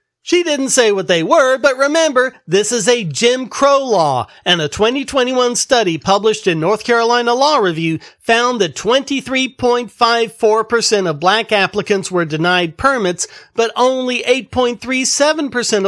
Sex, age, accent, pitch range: male, 40-59, American, 175-250 Hz